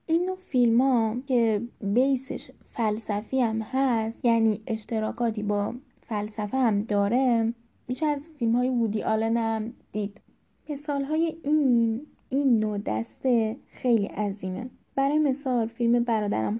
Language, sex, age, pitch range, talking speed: Persian, female, 10-29, 210-255 Hz, 120 wpm